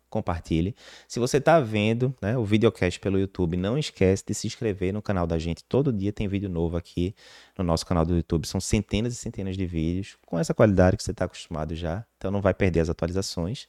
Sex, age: male, 20-39